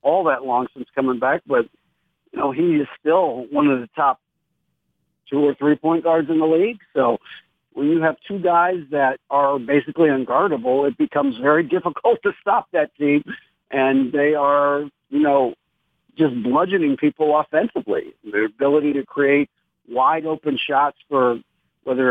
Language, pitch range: English, 135-160 Hz